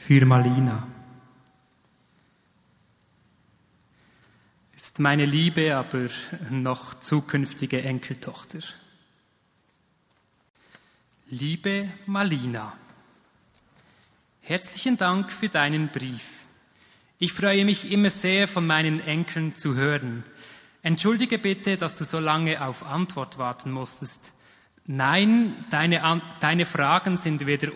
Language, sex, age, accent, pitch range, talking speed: German, male, 30-49, German, 130-175 Hz, 90 wpm